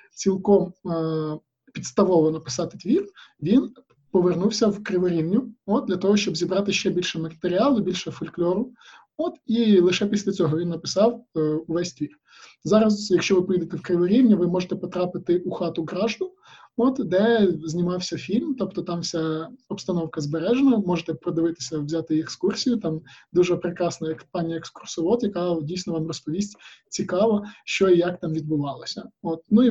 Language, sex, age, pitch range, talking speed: Ukrainian, male, 20-39, 160-195 Hz, 145 wpm